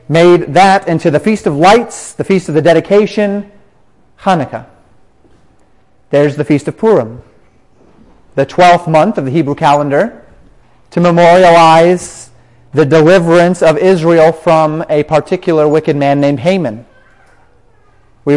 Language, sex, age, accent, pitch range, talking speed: English, male, 30-49, American, 145-180 Hz, 125 wpm